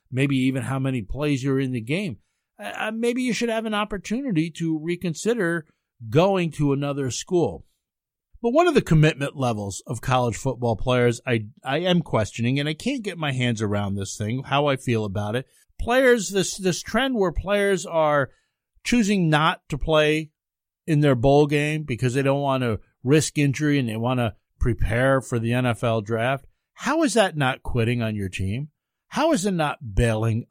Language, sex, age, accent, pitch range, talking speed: English, male, 50-69, American, 120-175 Hz, 185 wpm